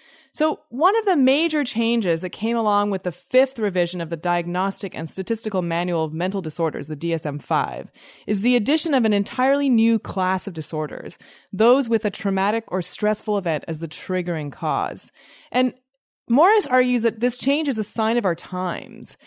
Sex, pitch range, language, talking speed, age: female, 175-250 Hz, English, 180 wpm, 20-39